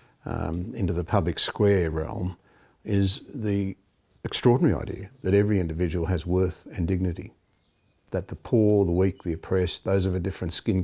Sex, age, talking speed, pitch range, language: male, 50-69, 160 wpm, 95-115 Hz, English